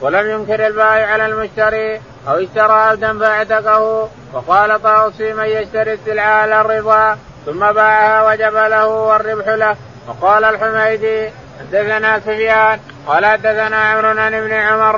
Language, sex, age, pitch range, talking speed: Arabic, male, 30-49, 215-220 Hz, 115 wpm